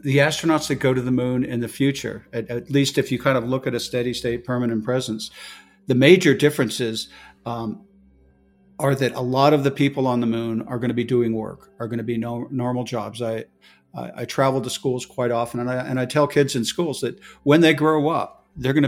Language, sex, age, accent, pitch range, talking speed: English, male, 50-69, American, 120-140 Hz, 235 wpm